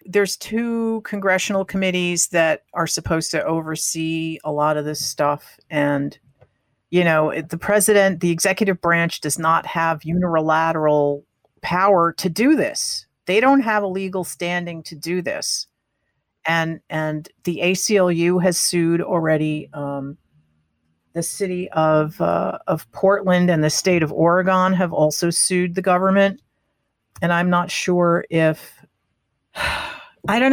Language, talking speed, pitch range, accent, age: English, 140 wpm, 155-190 Hz, American, 50-69